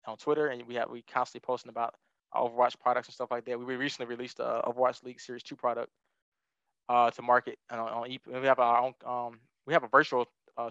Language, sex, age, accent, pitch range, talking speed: English, male, 20-39, American, 115-130 Hz, 240 wpm